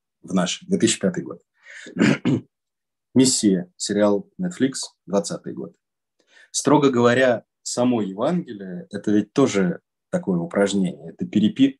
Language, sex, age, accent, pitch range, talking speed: Russian, male, 20-39, native, 105-155 Hz, 105 wpm